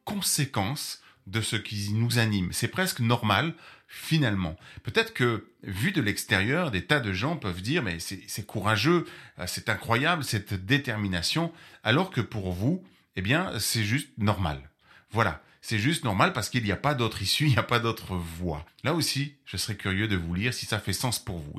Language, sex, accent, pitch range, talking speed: French, male, French, 95-140 Hz, 195 wpm